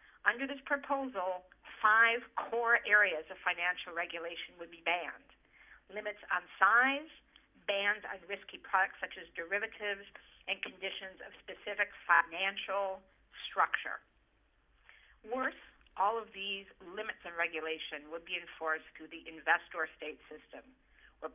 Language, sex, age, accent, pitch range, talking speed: English, female, 50-69, American, 155-200 Hz, 125 wpm